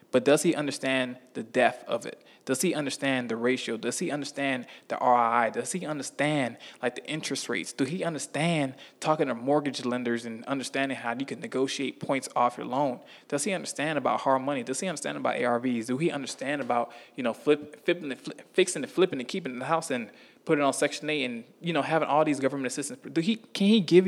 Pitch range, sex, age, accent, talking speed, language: 125-155 Hz, male, 20-39, American, 215 wpm, English